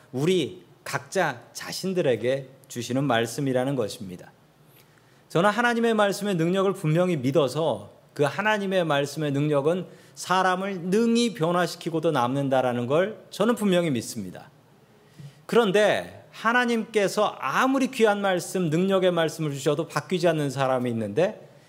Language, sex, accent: Korean, male, native